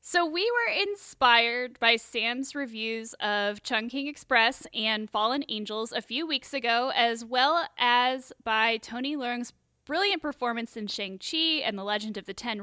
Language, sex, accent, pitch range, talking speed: English, female, American, 225-290 Hz, 155 wpm